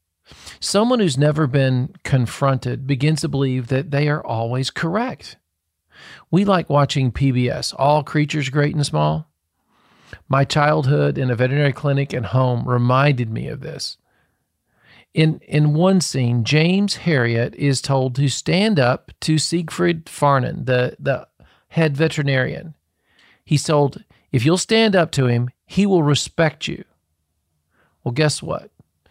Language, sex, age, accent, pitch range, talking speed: English, male, 40-59, American, 125-165 Hz, 140 wpm